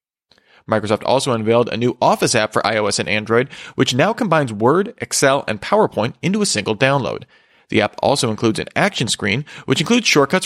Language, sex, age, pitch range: English, male, 40-59, 115-140 Hz